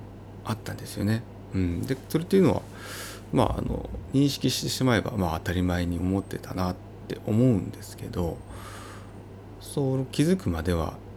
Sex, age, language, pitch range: male, 30-49, Japanese, 95-115 Hz